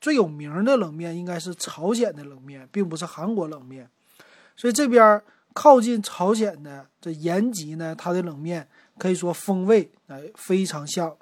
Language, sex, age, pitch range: Chinese, male, 30-49, 170-225 Hz